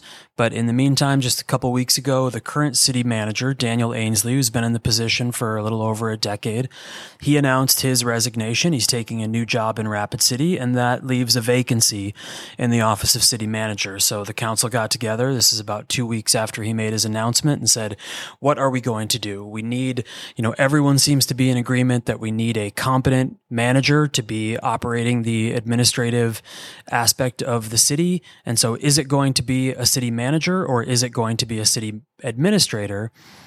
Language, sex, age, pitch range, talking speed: English, male, 20-39, 110-130 Hz, 210 wpm